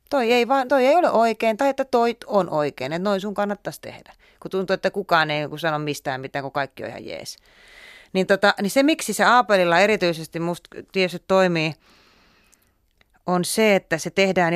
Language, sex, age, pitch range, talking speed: Finnish, female, 30-49, 165-245 Hz, 190 wpm